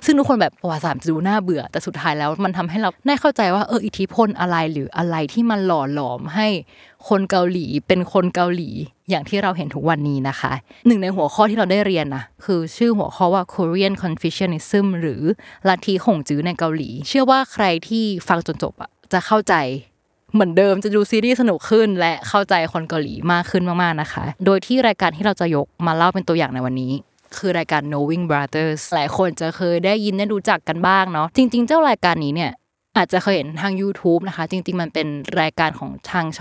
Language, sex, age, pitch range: Thai, female, 20-39, 160-205 Hz